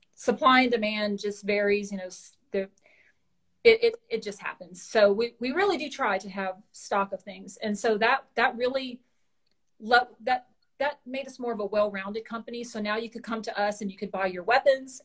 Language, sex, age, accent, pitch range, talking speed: English, female, 40-59, American, 200-245 Hz, 205 wpm